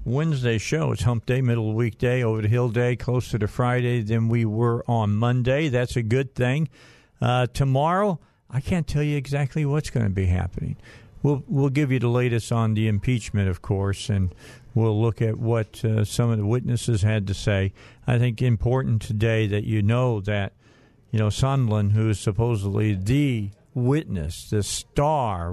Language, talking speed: English, 190 wpm